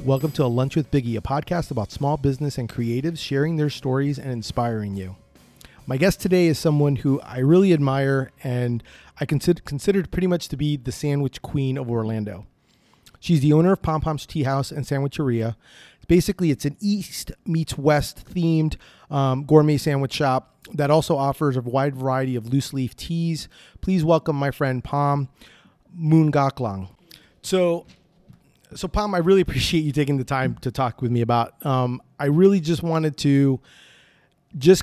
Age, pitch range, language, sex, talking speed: 30-49, 130-160 Hz, English, male, 175 wpm